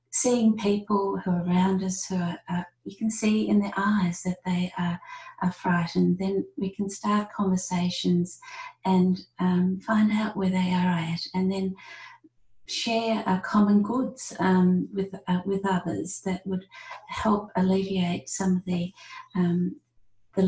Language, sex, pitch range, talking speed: English, female, 185-215 Hz, 150 wpm